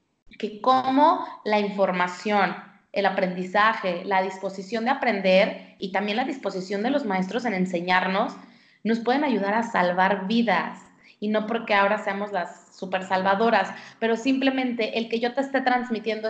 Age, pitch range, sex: 30-49, 200-245 Hz, female